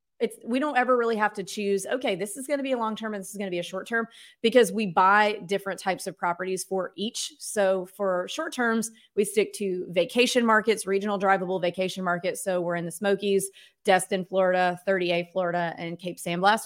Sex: female